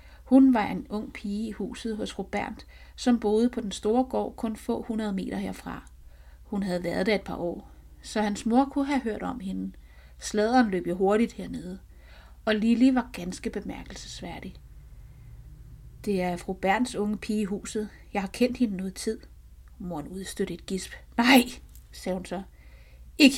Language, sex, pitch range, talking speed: Danish, female, 170-220 Hz, 175 wpm